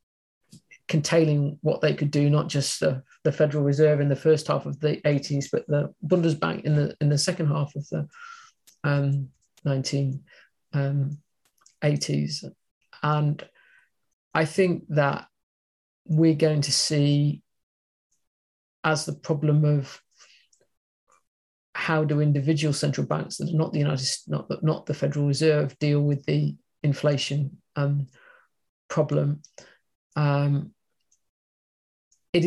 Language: English